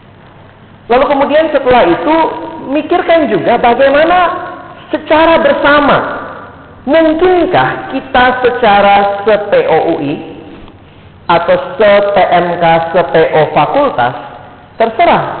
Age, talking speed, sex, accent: 40-59, 70 wpm, male, native